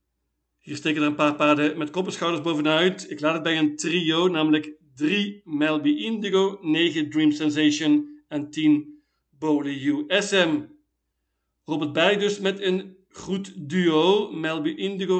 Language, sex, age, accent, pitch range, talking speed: Dutch, male, 50-69, Dutch, 150-190 Hz, 140 wpm